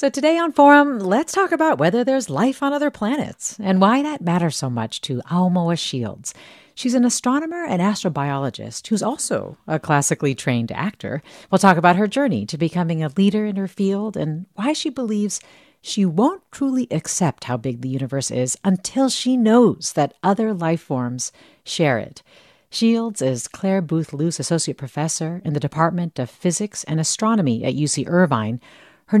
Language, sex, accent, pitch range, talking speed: English, female, American, 140-210 Hz, 175 wpm